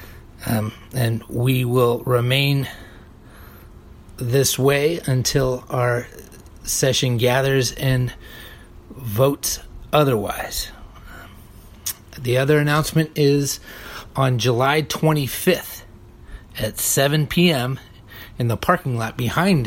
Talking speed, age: 90 wpm, 30-49